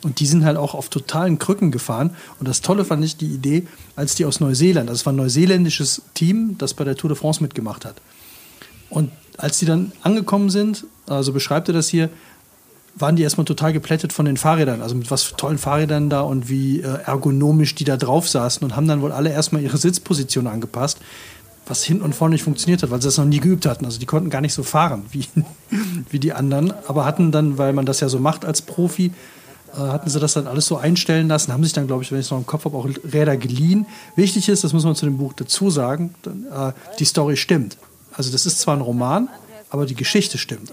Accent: German